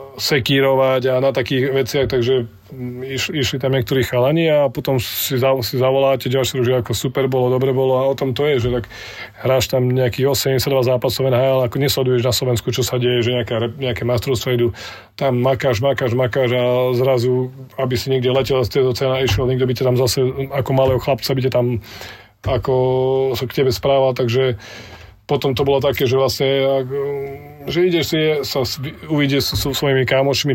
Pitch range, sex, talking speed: 125-135 Hz, male, 185 wpm